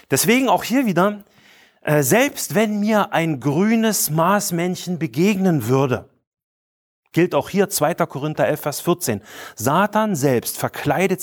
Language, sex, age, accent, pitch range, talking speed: German, male, 30-49, German, 130-180 Hz, 125 wpm